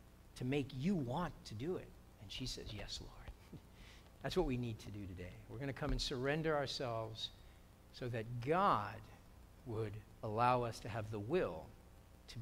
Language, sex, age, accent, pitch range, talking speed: English, male, 50-69, American, 110-145 Hz, 180 wpm